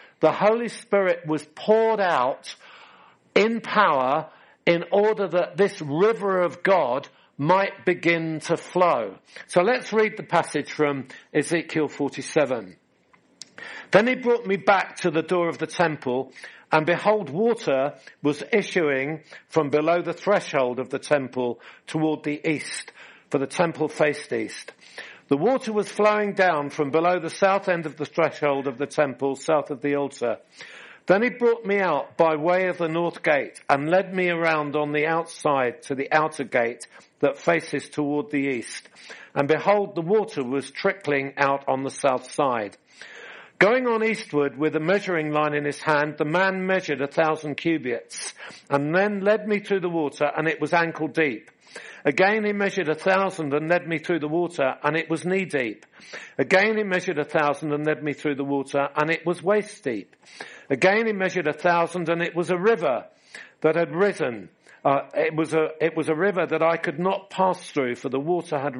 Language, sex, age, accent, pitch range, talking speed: English, male, 50-69, British, 145-190 Hz, 180 wpm